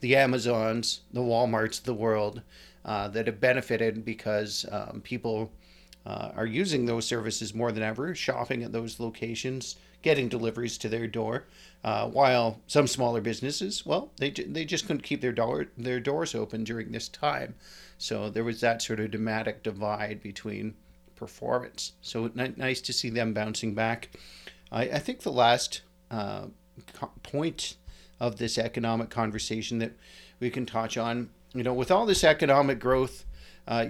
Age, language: 40-59, English